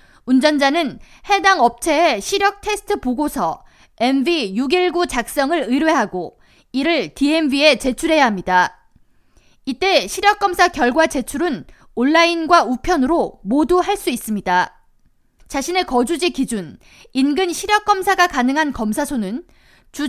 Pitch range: 255-350 Hz